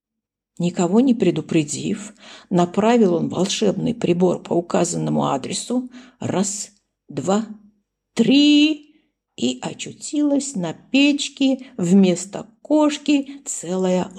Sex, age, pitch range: female, 50-69, 190-235 Hz